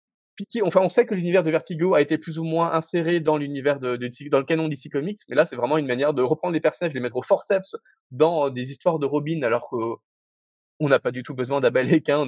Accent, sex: French, male